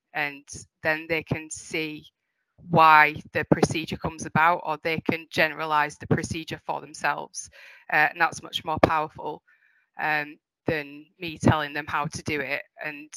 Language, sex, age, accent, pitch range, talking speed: English, female, 20-39, British, 145-165 Hz, 155 wpm